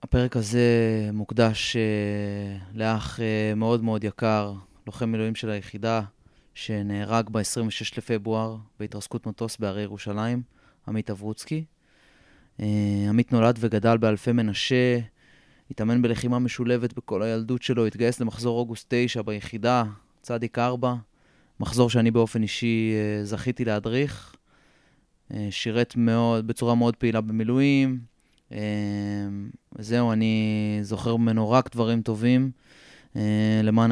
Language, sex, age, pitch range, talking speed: Hebrew, male, 20-39, 110-125 Hz, 115 wpm